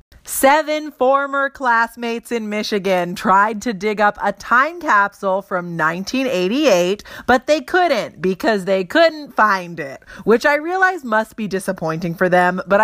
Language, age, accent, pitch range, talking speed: English, 30-49, American, 185-275 Hz, 145 wpm